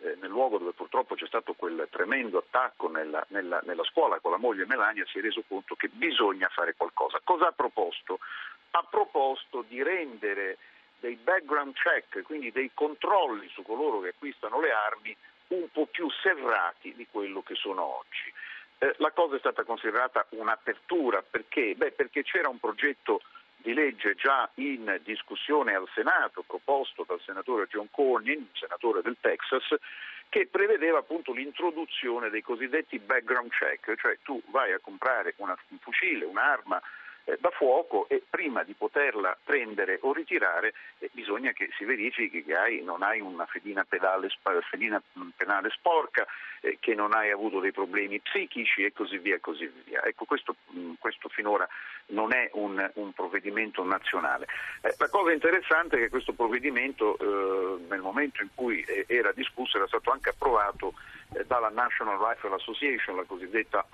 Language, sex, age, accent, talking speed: Italian, male, 50-69, native, 155 wpm